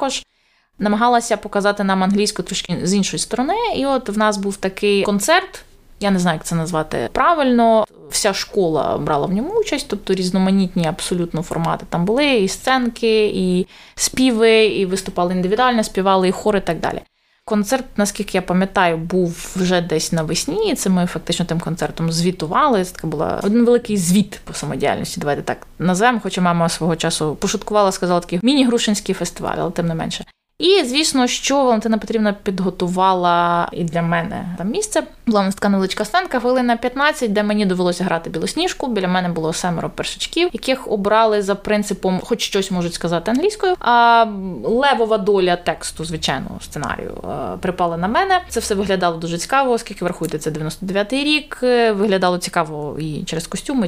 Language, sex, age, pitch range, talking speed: Ukrainian, female, 20-39, 175-235 Hz, 165 wpm